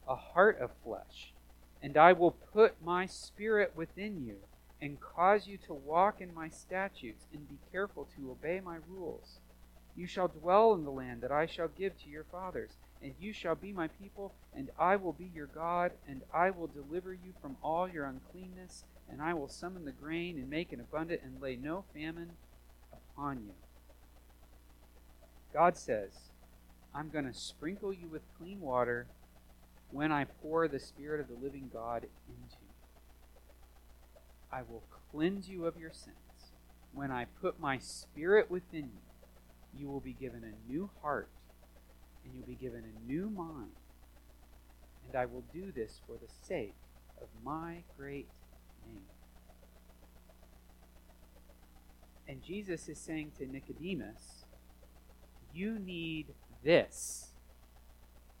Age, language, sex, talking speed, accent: 40-59, English, male, 150 wpm, American